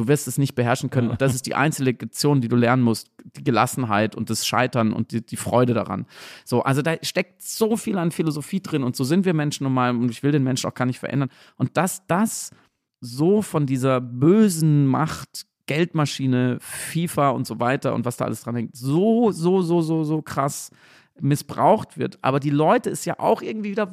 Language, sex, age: German, male, 40-59